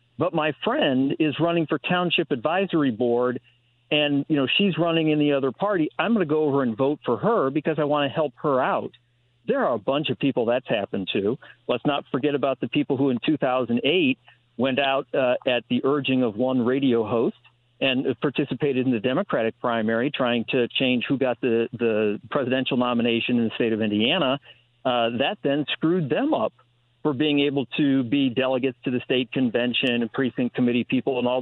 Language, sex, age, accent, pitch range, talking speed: English, male, 50-69, American, 120-150 Hz, 200 wpm